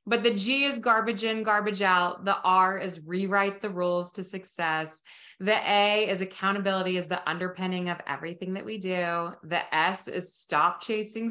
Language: English